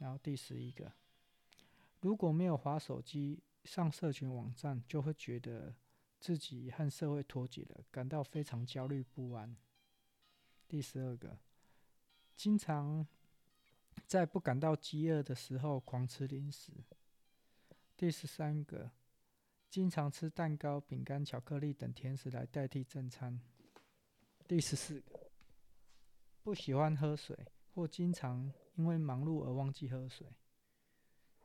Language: Chinese